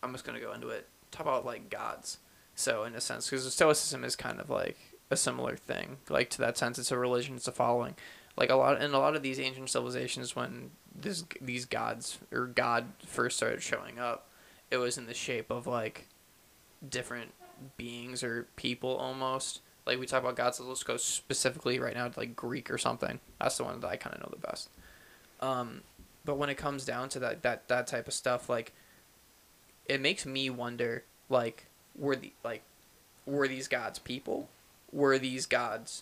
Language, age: English, 20-39